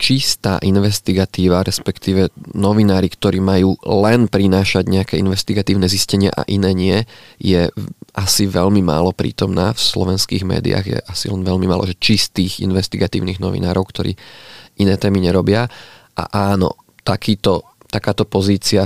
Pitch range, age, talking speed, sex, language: 95-105 Hz, 20-39, 125 wpm, male, Slovak